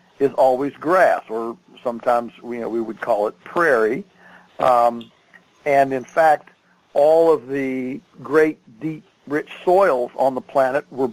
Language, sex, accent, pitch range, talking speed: English, male, American, 130-155 Hz, 150 wpm